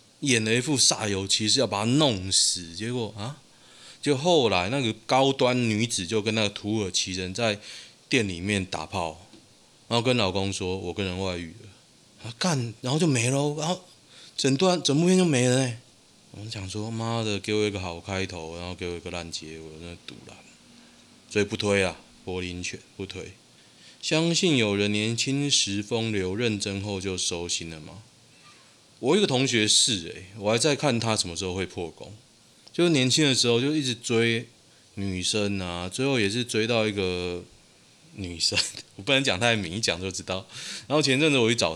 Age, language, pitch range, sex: 20-39, Chinese, 95-135 Hz, male